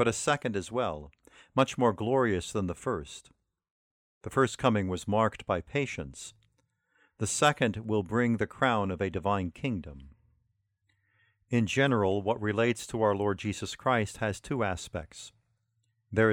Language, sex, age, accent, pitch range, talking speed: English, male, 50-69, American, 100-120 Hz, 150 wpm